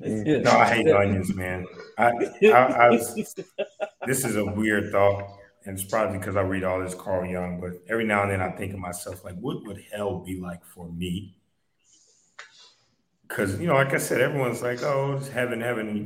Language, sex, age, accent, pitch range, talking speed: English, male, 30-49, American, 90-110 Hz, 200 wpm